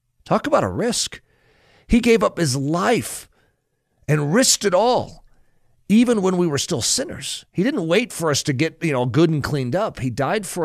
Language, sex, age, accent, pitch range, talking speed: English, male, 40-59, American, 120-165 Hz, 185 wpm